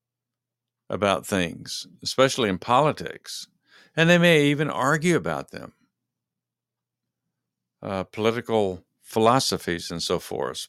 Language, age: English, 60-79